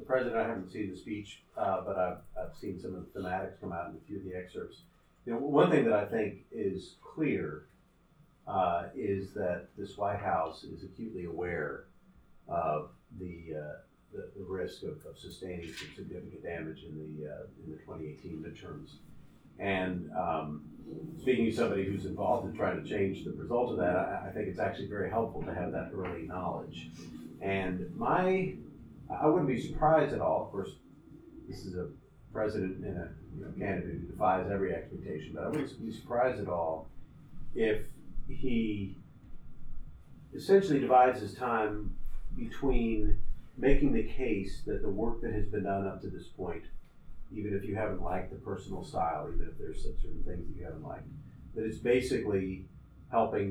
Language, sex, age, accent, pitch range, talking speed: English, male, 40-59, American, 85-105 Hz, 180 wpm